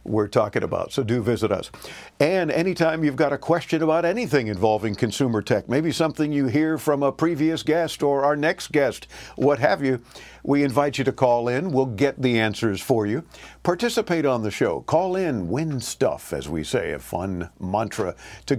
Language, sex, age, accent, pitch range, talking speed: English, male, 50-69, American, 115-150 Hz, 195 wpm